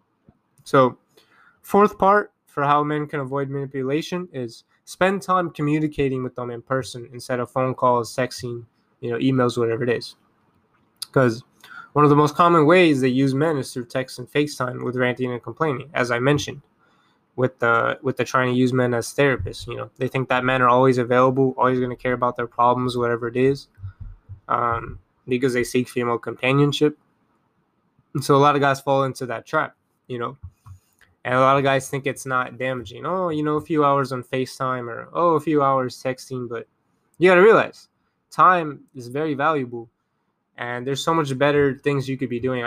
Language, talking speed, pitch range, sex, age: English, 195 wpm, 125-145 Hz, male, 20-39